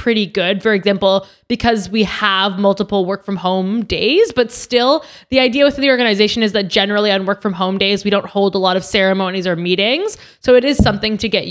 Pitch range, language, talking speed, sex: 190-235 Hz, English, 220 wpm, female